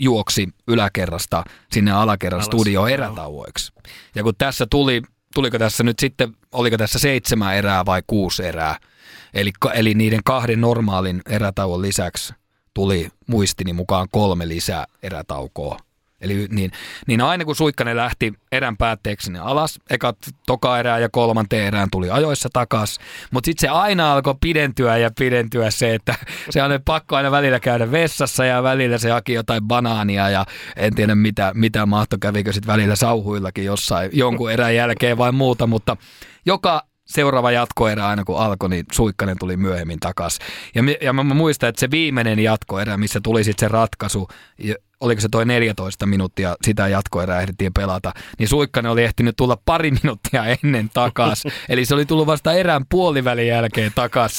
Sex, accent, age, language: male, native, 30-49, Finnish